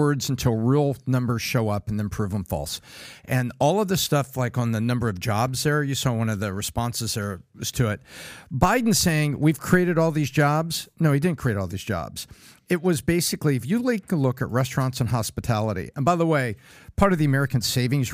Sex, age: male, 50-69